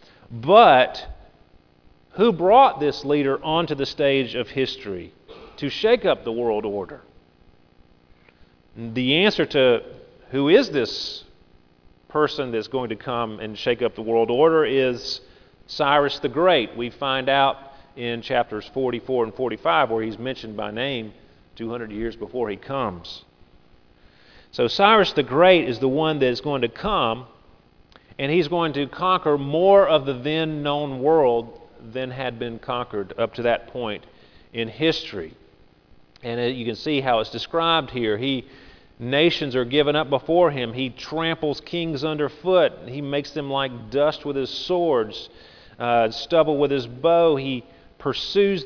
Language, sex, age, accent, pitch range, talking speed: English, male, 40-59, American, 115-155 Hz, 150 wpm